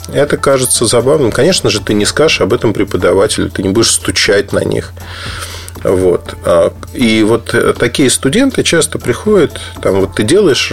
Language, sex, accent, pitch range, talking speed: Russian, male, native, 90-120 Hz, 155 wpm